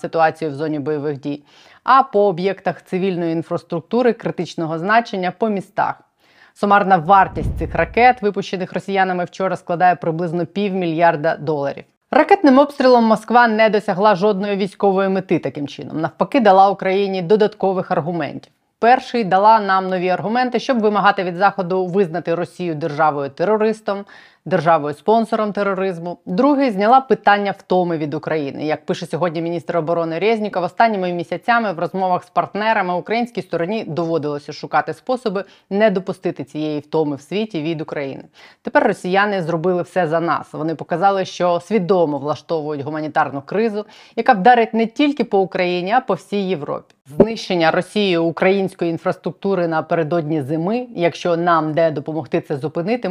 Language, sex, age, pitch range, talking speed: Ukrainian, female, 20-39, 165-205 Hz, 140 wpm